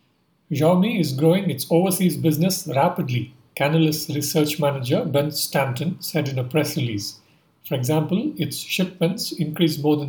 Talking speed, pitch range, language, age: 145 wpm, 150-170 Hz, English, 50-69